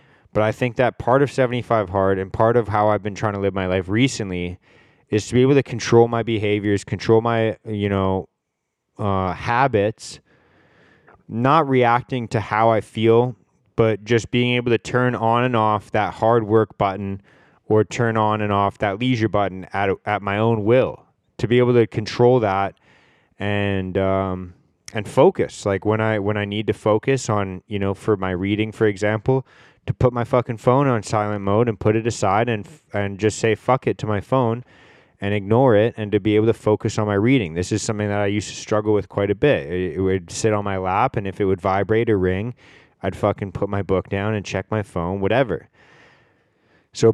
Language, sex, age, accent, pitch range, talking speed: English, male, 20-39, American, 100-115 Hz, 205 wpm